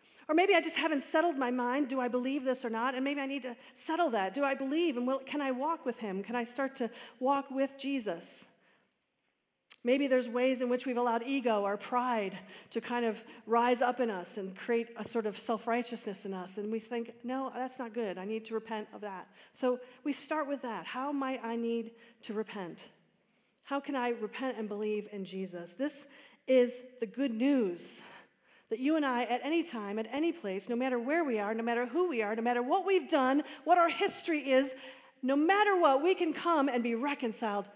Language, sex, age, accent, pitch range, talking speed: English, female, 40-59, American, 235-305 Hz, 220 wpm